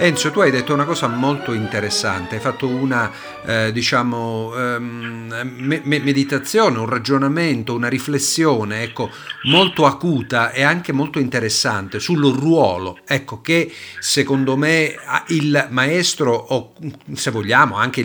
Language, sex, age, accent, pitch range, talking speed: Italian, male, 50-69, native, 120-160 Hz, 130 wpm